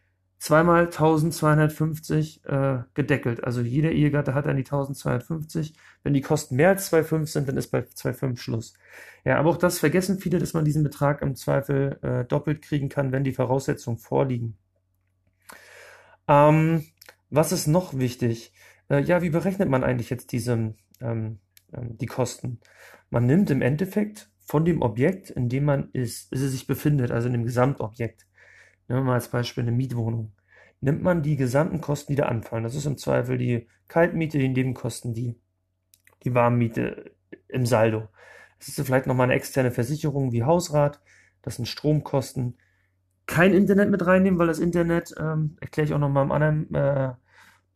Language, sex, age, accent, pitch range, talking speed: German, male, 40-59, German, 120-155 Hz, 170 wpm